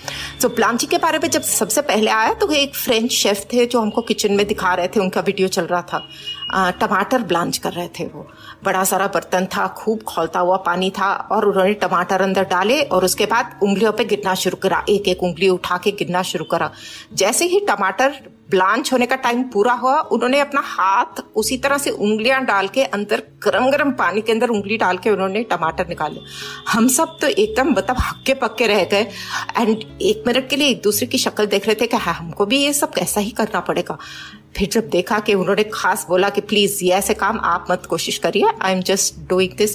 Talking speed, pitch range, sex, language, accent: 210 wpm, 185-240 Hz, female, Hindi, native